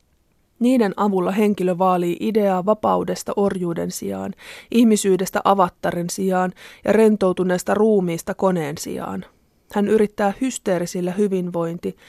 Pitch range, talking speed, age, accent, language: 175-210 Hz, 100 wpm, 20-39, native, Finnish